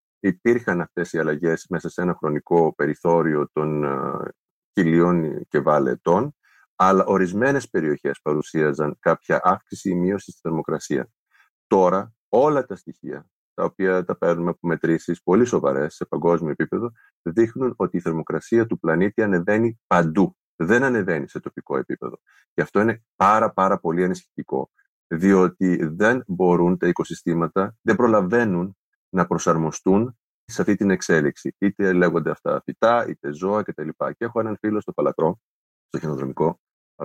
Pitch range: 85-105 Hz